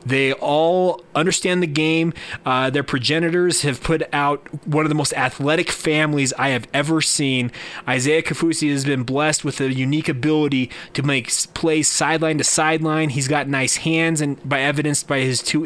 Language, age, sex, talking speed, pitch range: English, 20-39, male, 175 wpm, 140-160 Hz